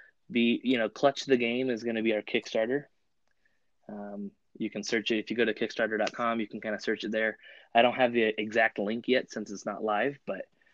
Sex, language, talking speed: male, English, 230 wpm